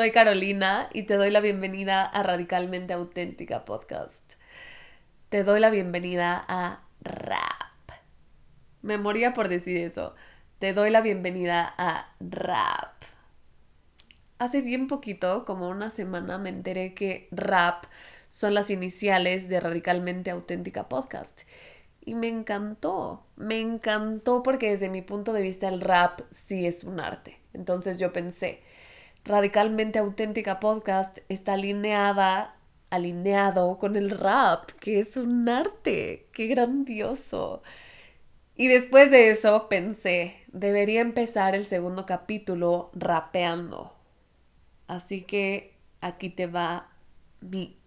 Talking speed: 120 wpm